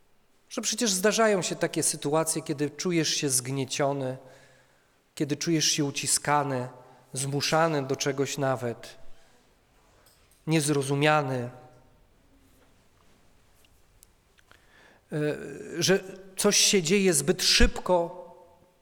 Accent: native